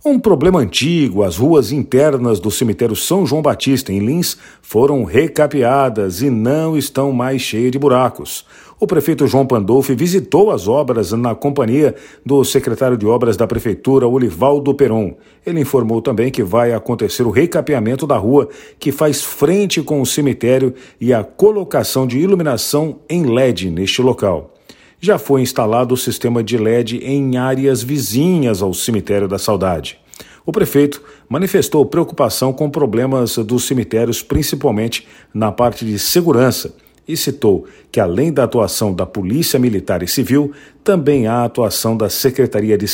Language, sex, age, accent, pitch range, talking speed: Portuguese, male, 50-69, Brazilian, 115-145 Hz, 150 wpm